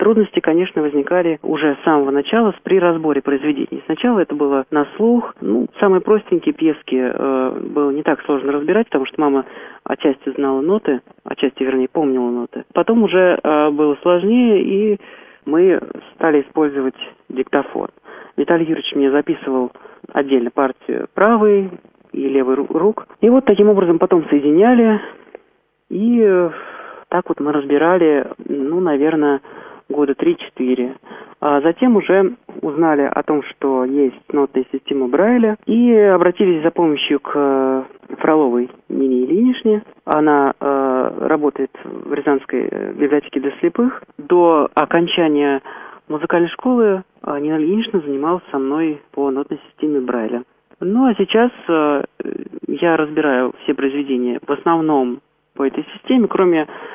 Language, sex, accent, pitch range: Russian, male, native, 140-195 Hz